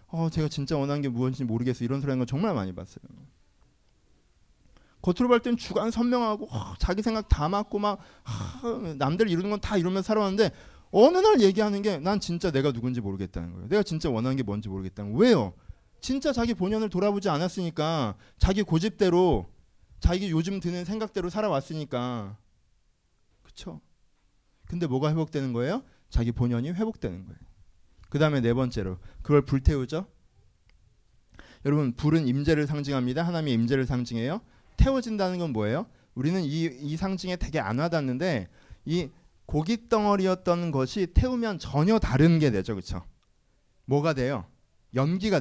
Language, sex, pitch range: Korean, male, 120-190 Hz